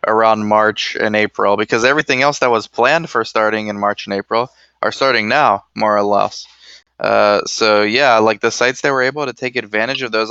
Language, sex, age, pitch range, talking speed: English, male, 20-39, 105-125 Hz, 210 wpm